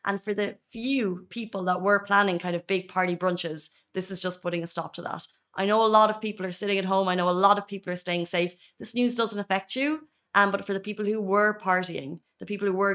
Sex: female